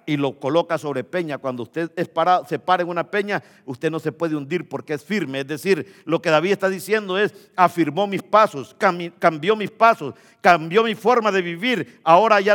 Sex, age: male, 50-69